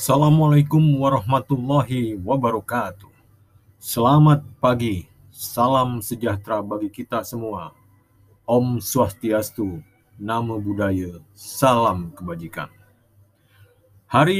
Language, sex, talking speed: Indonesian, male, 70 wpm